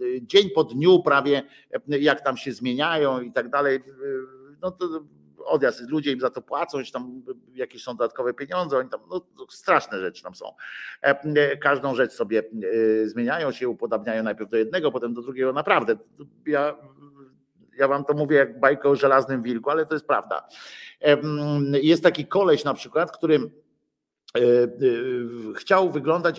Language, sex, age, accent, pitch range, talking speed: Polish, male, 50-69, native, 130-165 Hz, 150 wpm